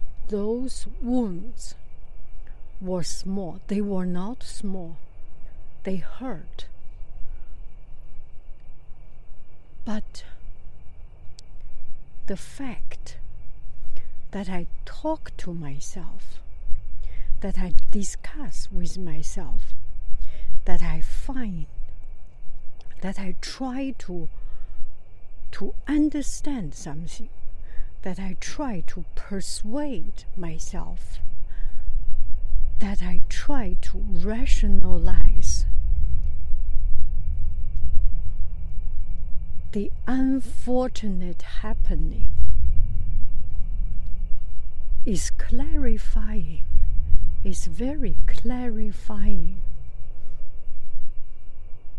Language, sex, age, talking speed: English, female, 60-79, 60 wpm